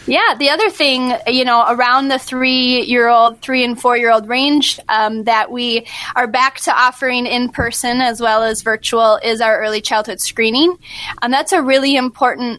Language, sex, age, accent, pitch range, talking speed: English, female, 10-29, American, 220-255 Hz, 170 wpm